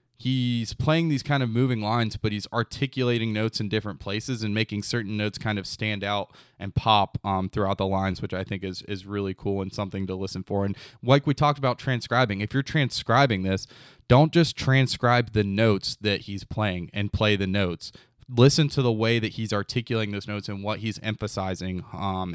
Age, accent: 20-39, American